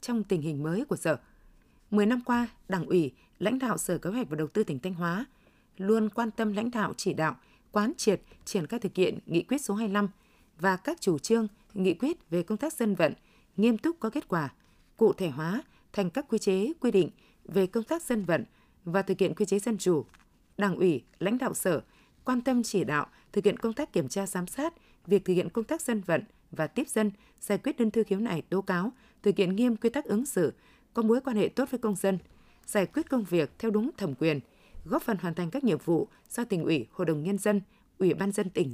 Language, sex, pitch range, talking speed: Vietnamese, female, 180-230 Hz, 235 wpm